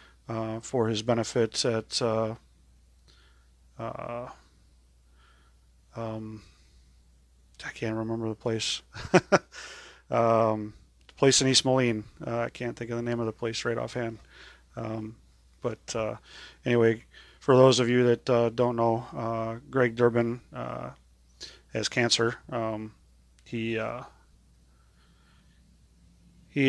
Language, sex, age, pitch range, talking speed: English, male, 30-49, 110-120 Hz, 120 wpm